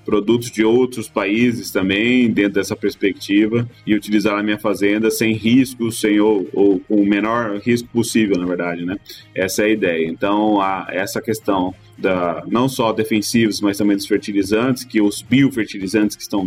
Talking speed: 170 wpm